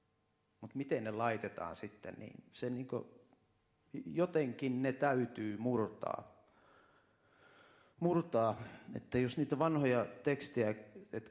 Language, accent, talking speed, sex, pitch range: Finnish, native, 100 wpm, male, 105-130 Hz